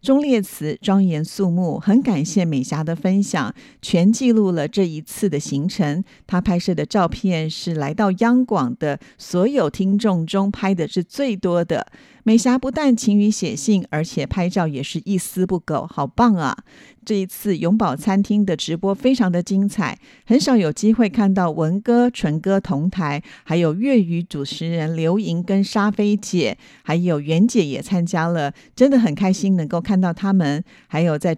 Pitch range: 160-205 Hz